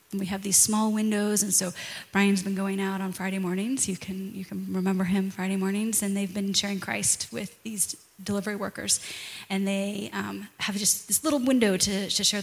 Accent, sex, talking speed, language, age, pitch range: American, female, 210 wpm, English, 20-39, 195-235 Hz